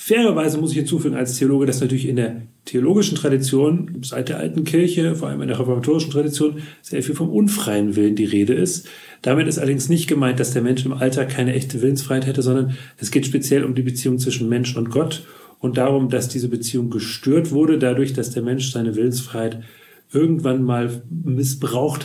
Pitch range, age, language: 125-150 Hz, 40-59, German